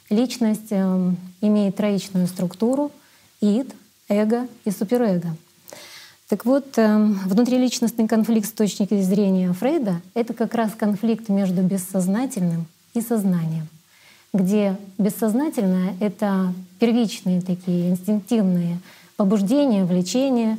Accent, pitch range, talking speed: American, 190-230 Hz, 95 wpm